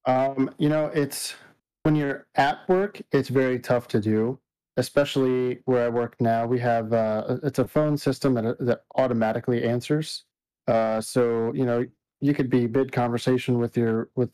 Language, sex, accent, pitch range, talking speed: English, male, American, 115-140 Hz, 170 wpm